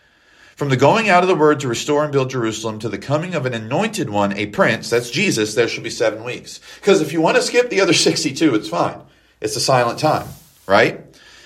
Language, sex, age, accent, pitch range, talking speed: English, male, 40-59, American, 105-150 Hz, 230 wpm